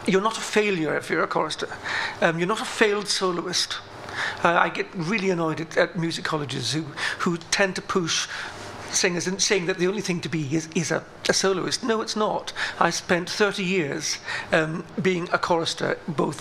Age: 50-69